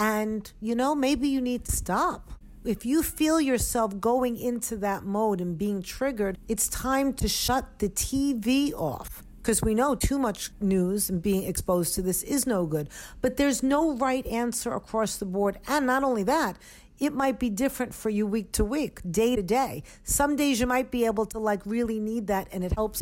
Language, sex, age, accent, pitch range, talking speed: English, female, 50-69, American, 195-260 Hz, 205 wpm